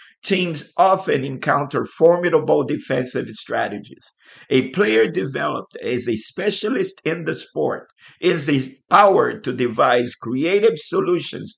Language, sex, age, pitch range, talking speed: English, male, 50-69, 130-190 Hz, 110 wpm